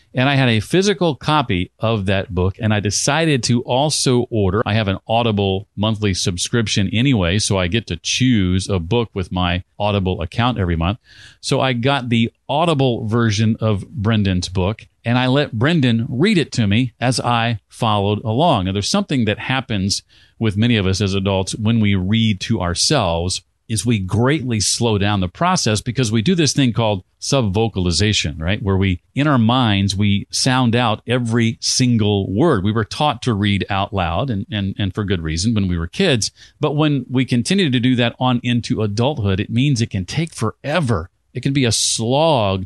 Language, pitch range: English, 100-125 Hz